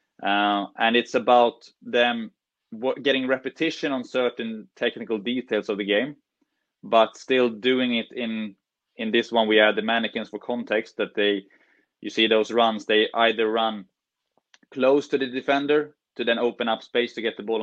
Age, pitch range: 20-39, 110-125 Hz